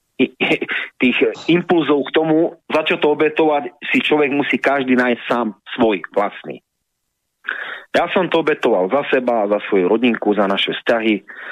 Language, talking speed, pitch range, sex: Slovak, 140 wpm, 110-135 Hz, male